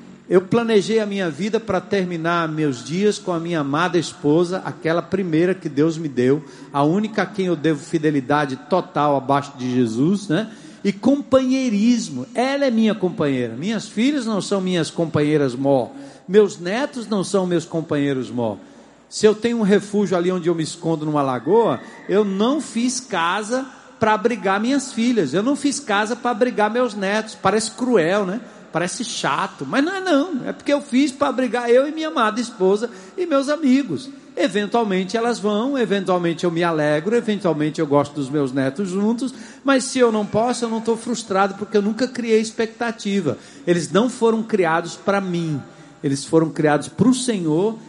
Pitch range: 155-230 Hz